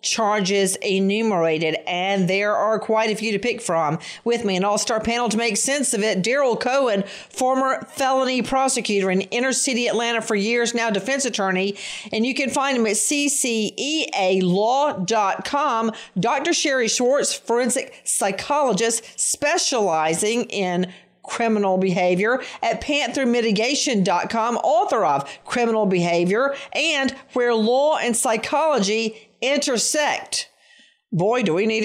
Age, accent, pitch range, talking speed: 40-59, American, 200-260 Hz, 125 wpm